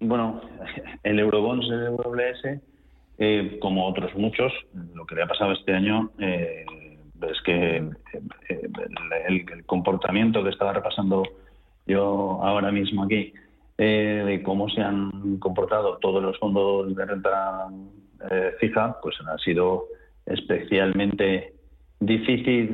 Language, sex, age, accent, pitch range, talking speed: Spanish, male, 40-59, Spanish, 90-115 Hz, 125 wpm